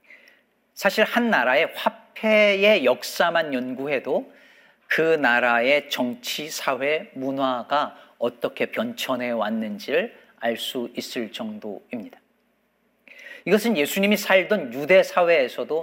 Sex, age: male, 40-59